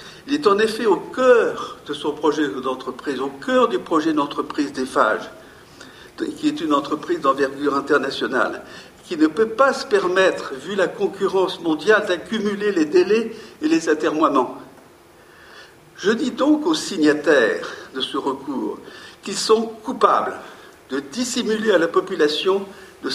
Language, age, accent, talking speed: French, 60-79, French, 145 wpm